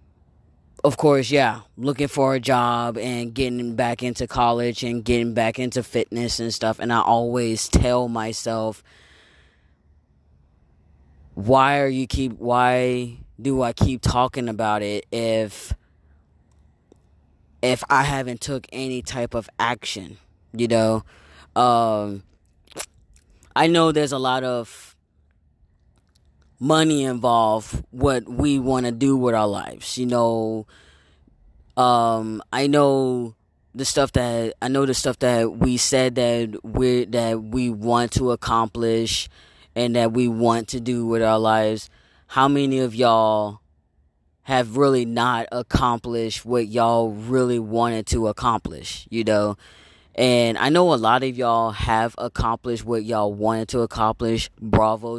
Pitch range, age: 105-125 Hz, 20-39